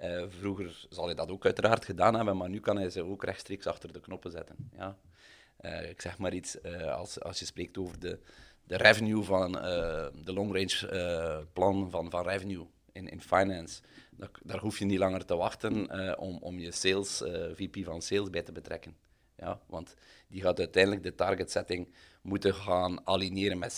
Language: Dutch